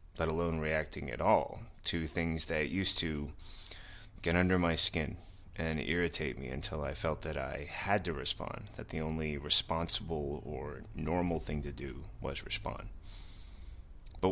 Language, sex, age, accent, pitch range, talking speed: English, male, 30-49, American, 75-90 Hz, 155 wpm